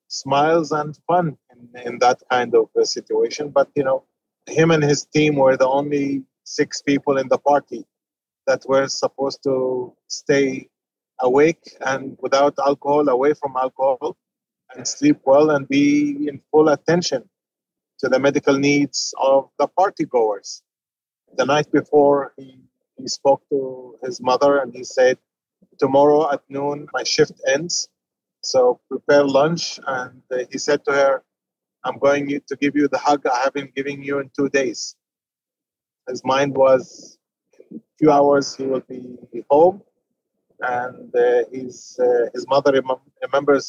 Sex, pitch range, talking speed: male, 130-150 Hz, 155 wpm